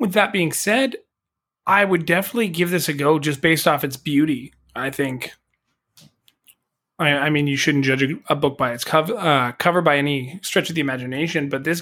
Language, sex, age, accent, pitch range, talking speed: English, male, 20-39, American, 140-175 Hz, 195 wpm